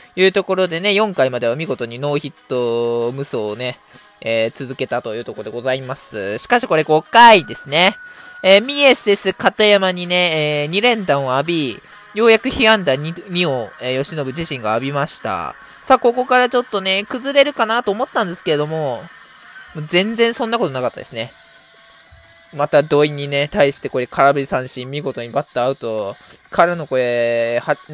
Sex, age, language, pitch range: male, 20-39, Japanese, 135-220 Hz